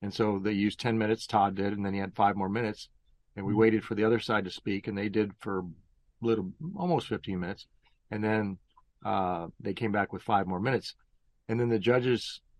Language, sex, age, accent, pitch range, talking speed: English, male, 40-59, American, 95-110 Hz, 225 wpm